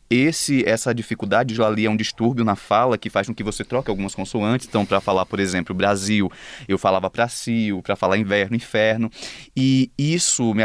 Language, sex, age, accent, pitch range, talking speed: Portuguese, male, 20-39, Brazilian, 110-140 Hz, 195 wpm